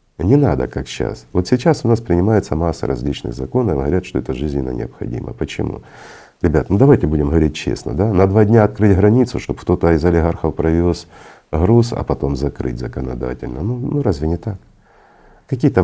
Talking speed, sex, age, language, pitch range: 175 wpm, male, 50-69, Russian, 75-100 Hz